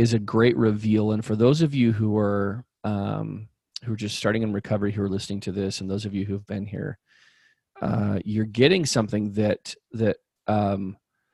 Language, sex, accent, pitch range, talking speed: English, male, American, 105-120 Hz, 195 wpm